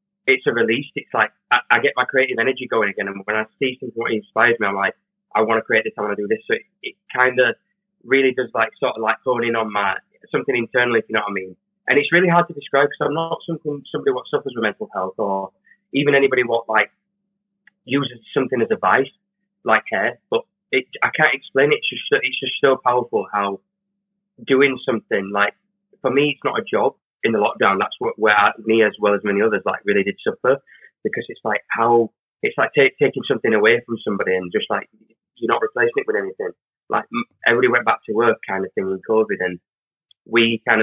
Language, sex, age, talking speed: English, male, 20-39, 230 wpm